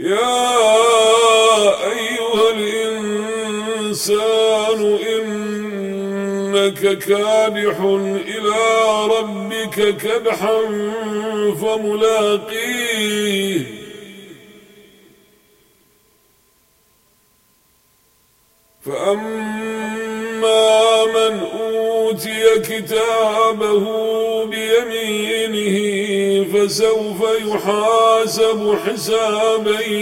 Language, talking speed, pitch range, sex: Arabic, 30 wpm, 195-225 Hz, male